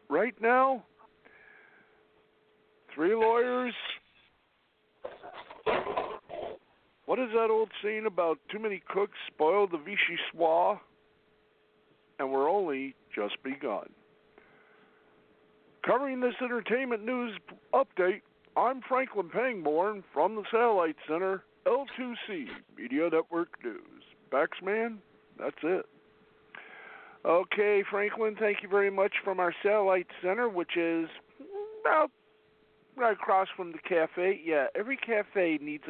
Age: 50-69